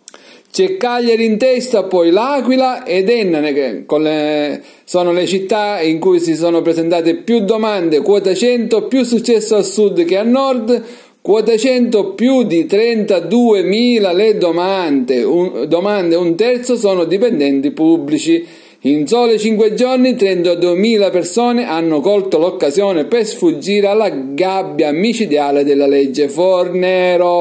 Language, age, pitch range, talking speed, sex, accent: Italian, 50-69, 170-230 Hz, 135 wpm, male, native